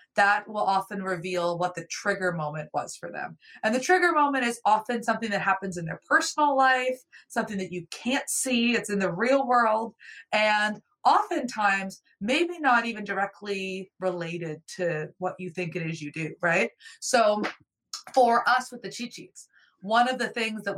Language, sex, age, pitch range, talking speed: English, female, 20-39, 185-230 Hz, 180 wpm